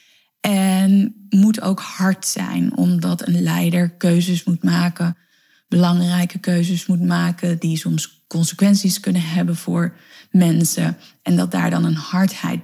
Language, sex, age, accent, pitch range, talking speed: Dutch, female, 20-39, Dutch, 175-215 Hz, 135 wpm